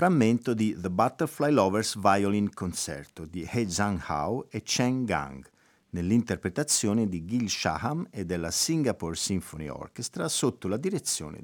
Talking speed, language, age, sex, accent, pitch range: 135 wpm, Italian, 50-69, male, native, 95-130 Hz